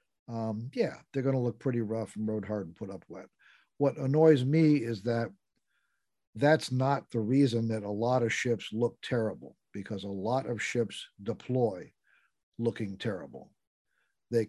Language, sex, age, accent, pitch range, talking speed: English, male, 50-69, American, 110-145 Hz, 165 wpm